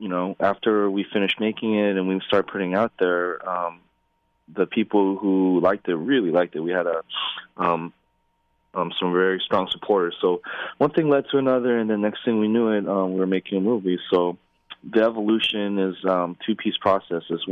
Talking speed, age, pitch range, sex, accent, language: 195 wpm, 20-39, 85-95 Hz, male, American, English